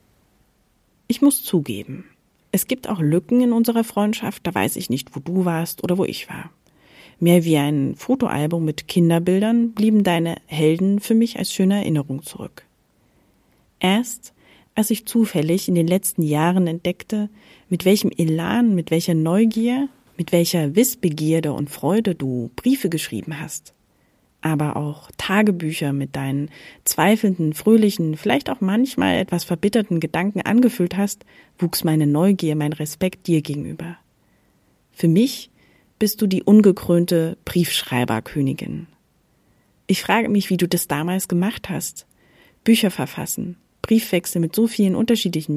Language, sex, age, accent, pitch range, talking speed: German, female, 40-59, German, 155-210 Hz, 140 wpm